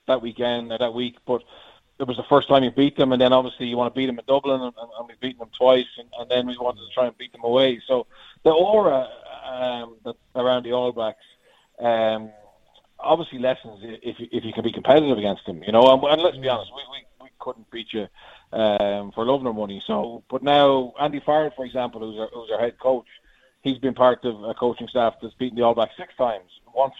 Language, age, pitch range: English, 20-39, 115-130 Hz